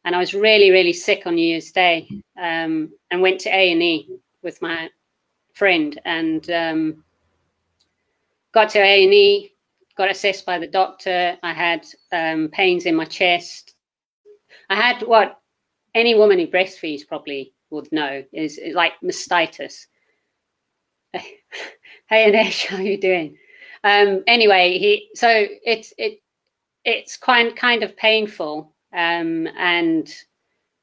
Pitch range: 170-235 Hz